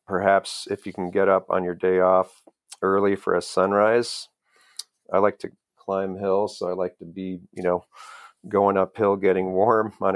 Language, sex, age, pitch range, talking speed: English, male, 40-59, 95-105 Hz, 185 wpm